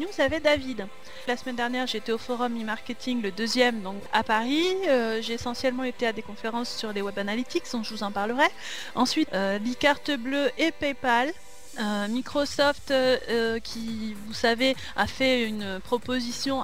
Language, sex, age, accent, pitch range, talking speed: French, female, 30-49, French, 220-290 Hz, 175 wpm